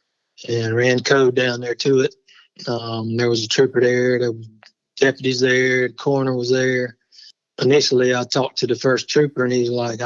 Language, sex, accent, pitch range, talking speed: English, male, American, 120-130 Hz, 185 wpm